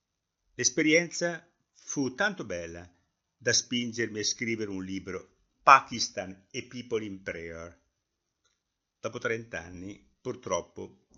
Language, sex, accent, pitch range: Italian, male, native, 95-135 Hz